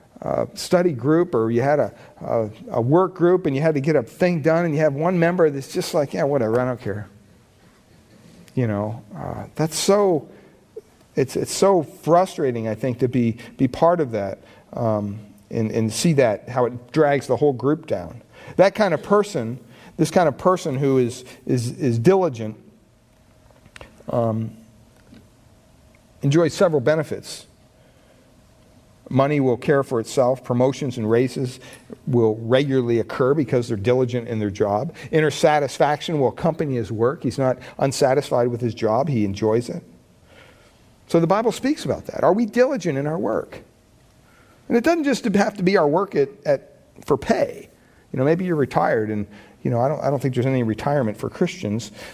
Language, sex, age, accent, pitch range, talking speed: English, male, 40-59, American, 115-165 Hz, 175 wpm